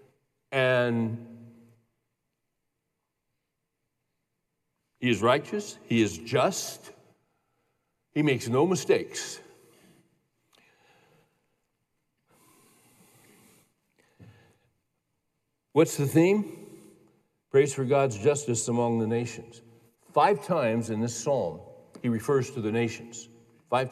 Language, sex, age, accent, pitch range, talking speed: English, male, 60-79, American, 115-145 Hz, 80 wpm